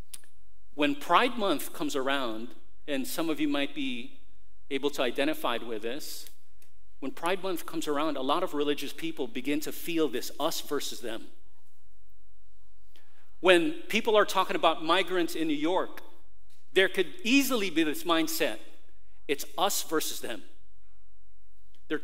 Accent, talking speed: American, 145 wpm